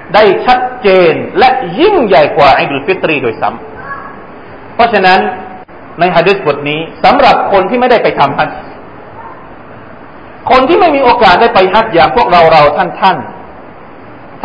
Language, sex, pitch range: Thai, male, 175-275 Hz